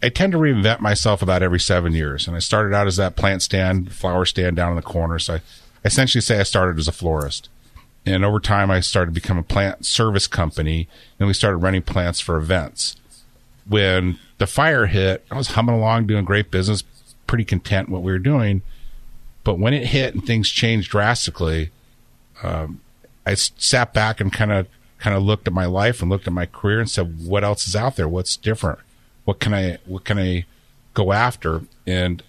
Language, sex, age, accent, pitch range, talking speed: English, male, 50-69, American, 90-115 Hz, 210 wpm